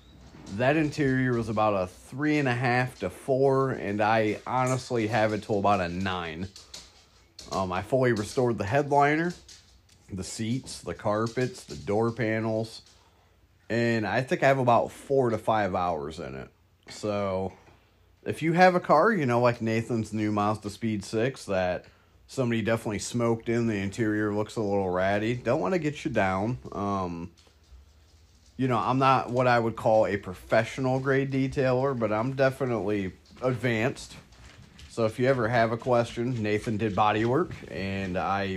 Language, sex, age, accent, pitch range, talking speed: English, male, 30-49, American, 95-125 Hz, 165 wpm